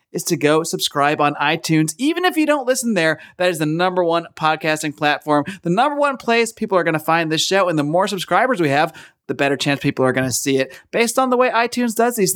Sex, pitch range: male, 170-240 Hz